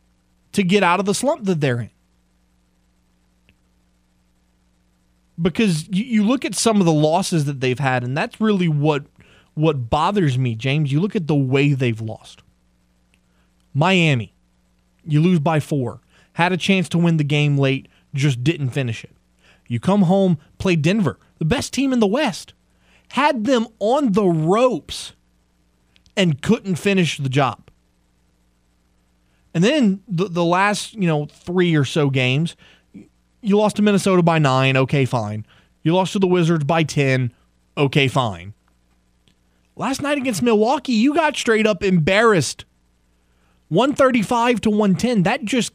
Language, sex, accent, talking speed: English, male, American, 155 wpm